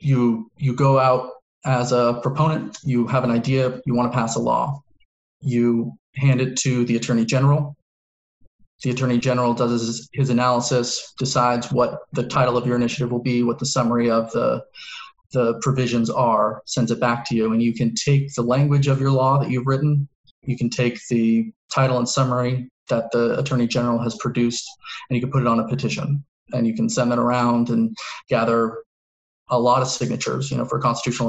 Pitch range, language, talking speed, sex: 115-135 Hz, English, 200 wpm, male